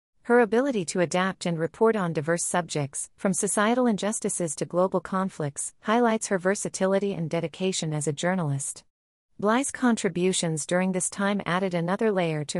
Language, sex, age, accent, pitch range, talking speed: English, female, 40-59, American, 165-205 Hz, 150 wpm